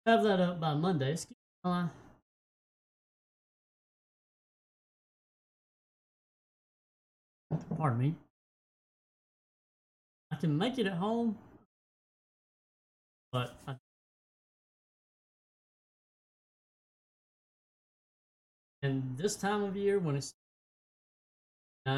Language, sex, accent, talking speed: English, male, American, 65 wpm